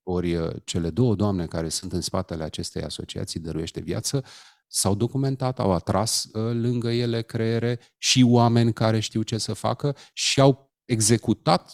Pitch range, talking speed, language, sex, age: 95-135 Hz, 150 wpm, Romanian, male, 30-49